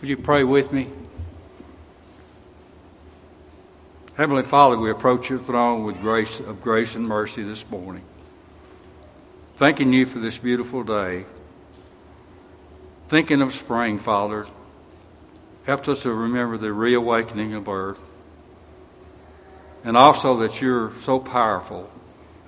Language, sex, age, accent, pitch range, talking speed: English, male, 60-79, American, 100-125 Hz, 115 wpm